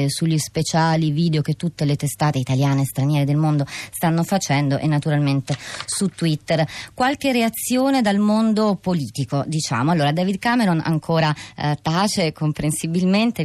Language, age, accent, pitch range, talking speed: Italian, 30-49, native, 145-180 Hz, 140 wpm